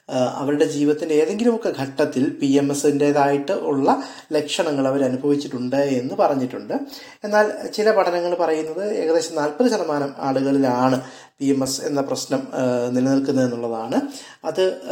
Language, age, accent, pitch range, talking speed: Malayalam, 20-39, native, 135-165 Hz, 115 wpm